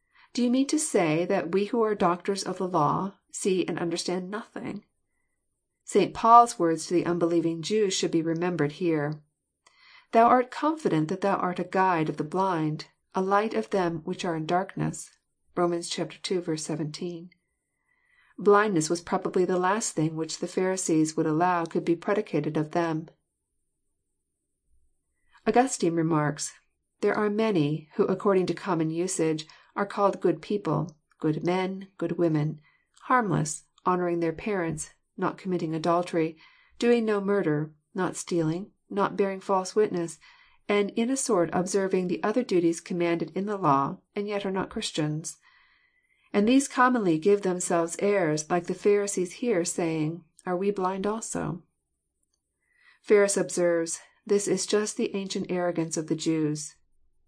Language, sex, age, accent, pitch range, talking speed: English, female, 40-59, American, 165-205 Hz, 150 wpm